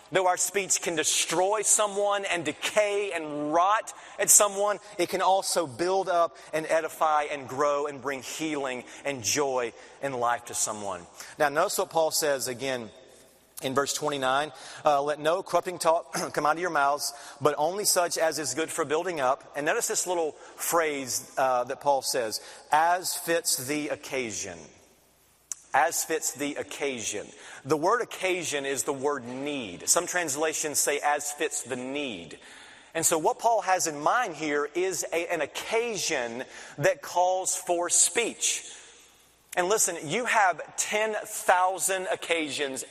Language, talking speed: English, 155 wpm